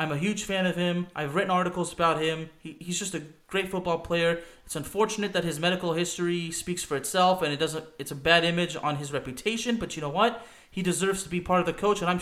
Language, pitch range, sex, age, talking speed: English, 160-195 Hz, male, 30-49, 250 wpm